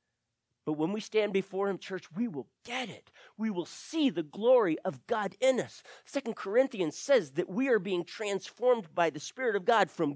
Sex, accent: male, American